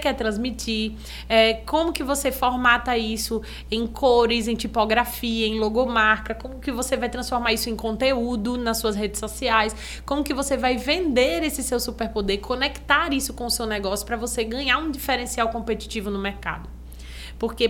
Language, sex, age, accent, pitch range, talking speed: Portuguese, female, 20-39, Brazilian, 215-270 Hz, 165 wpm